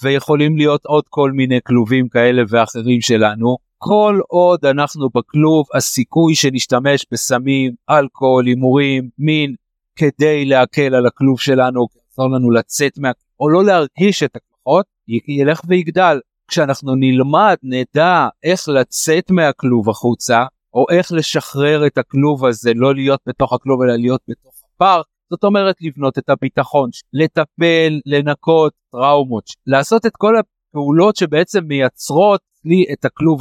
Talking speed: 135 wpm